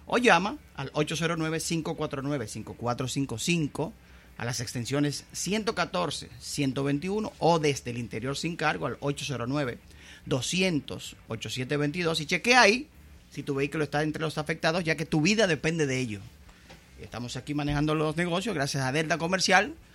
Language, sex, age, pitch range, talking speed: Spanish, male, 30-49, 115-155 Hz, 125 wpm